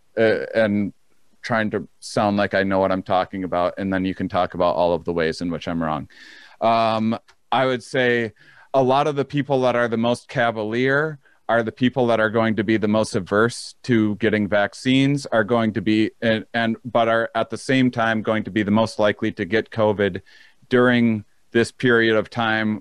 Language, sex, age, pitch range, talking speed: English, male, 40-59, 105-120 Hz, 210 wpm